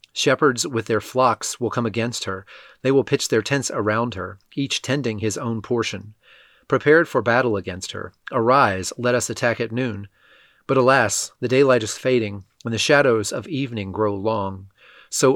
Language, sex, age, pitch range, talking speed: English, male, 30-49, 105-130 Hz, 175 wpm